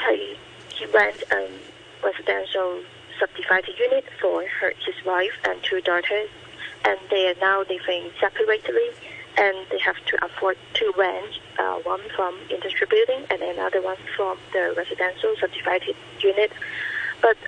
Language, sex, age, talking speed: English, female, 30-49, 140 wpm